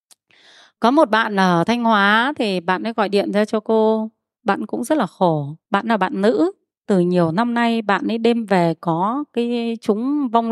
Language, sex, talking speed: Vietnamese, female, 200 wpm